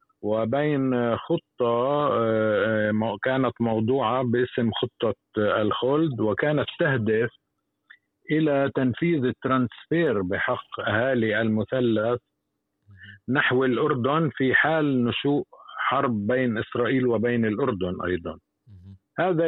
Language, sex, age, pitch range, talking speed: Arabic, male, 50-69, 105-130 Hz, 85 wpm